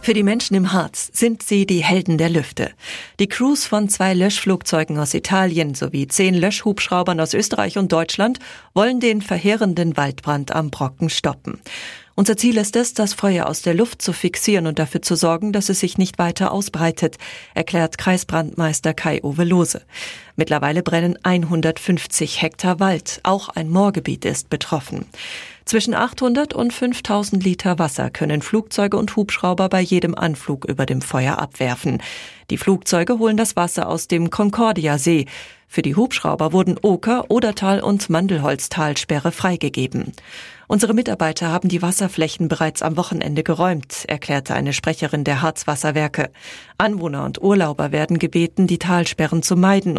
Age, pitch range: 40-59, 160-200 Hz